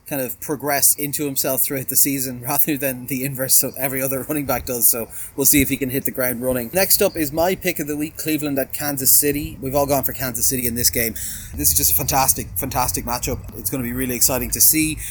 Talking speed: 255 wpm